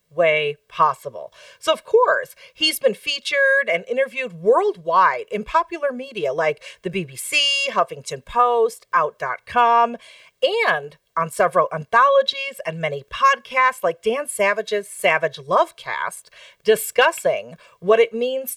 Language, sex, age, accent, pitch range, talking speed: English, female, 40-59, American, 185-295 Hz, 115 wpm